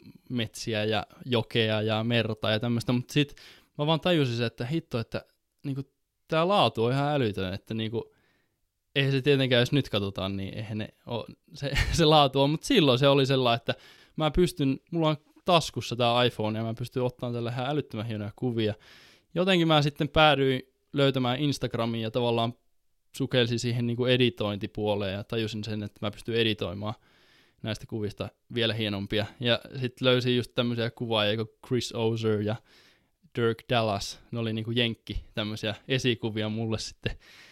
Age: 10-29